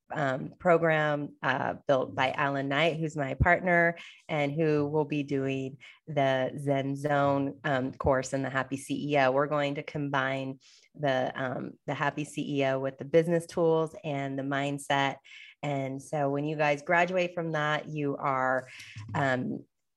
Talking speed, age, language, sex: 155 wpm, 30-49, English, female